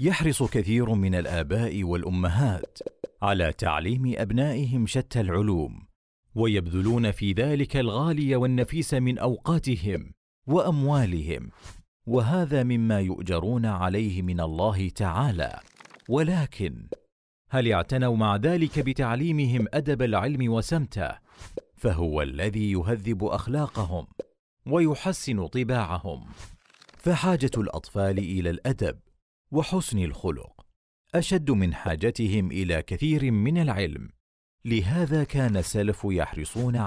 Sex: male